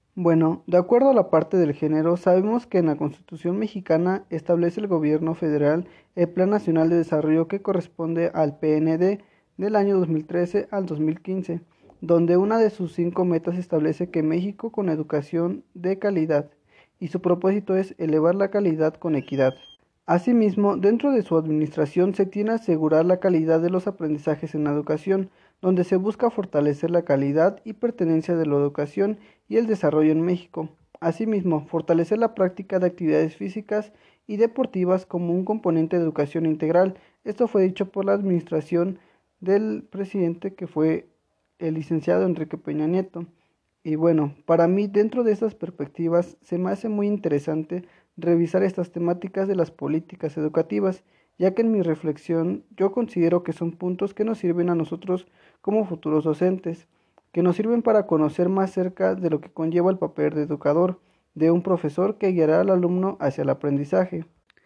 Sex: male